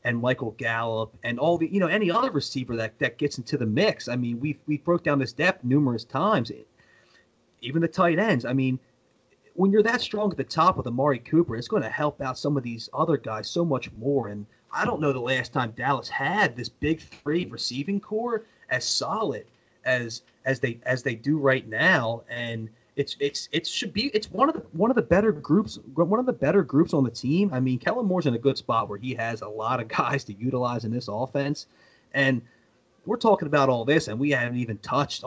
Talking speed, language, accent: 230 wpm, English, American